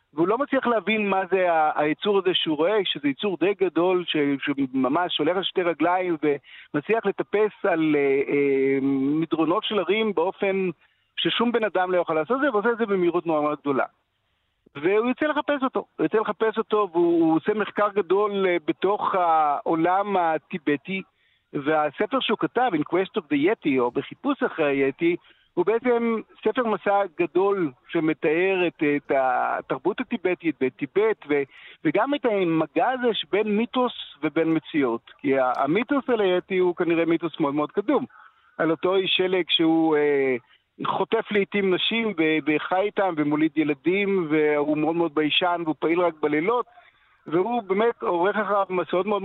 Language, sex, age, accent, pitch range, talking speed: Hebrew, male, 50-69, native, 160-225 Hz, 150 wpm